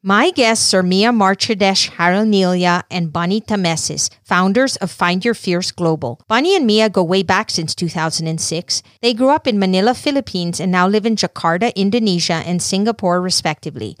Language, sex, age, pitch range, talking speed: English, female, 40-59, 175-225 Hz, 165 wpm